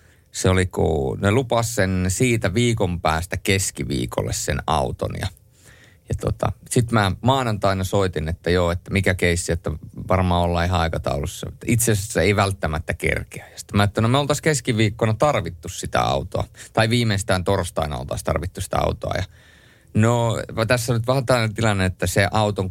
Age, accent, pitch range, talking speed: 30-49, native, 90-120 Hz, 160 wpm